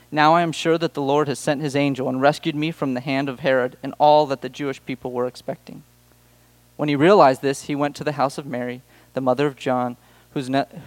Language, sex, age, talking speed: English, male, 30-49, 245 wpm